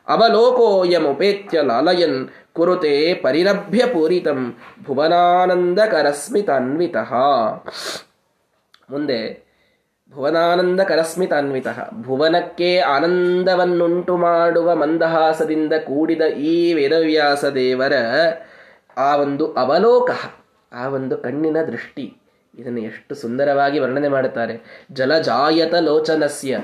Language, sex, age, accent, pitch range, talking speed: Kannada, male, 20-39, native, 145-180 Hz, 70 wpm